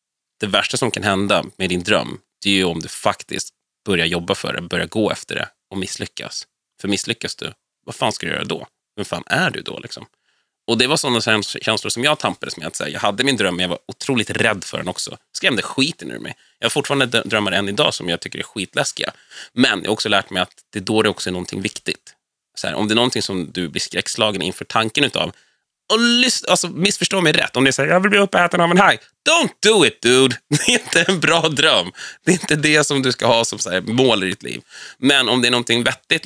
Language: Swedish